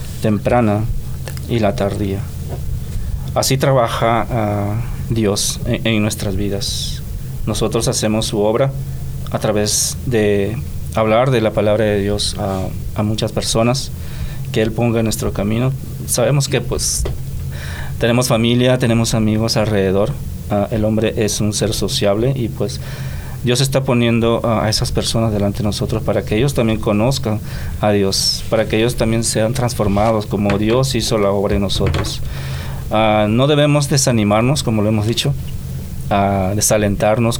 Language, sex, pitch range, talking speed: English, male, 100-120 Hz, 145 wpm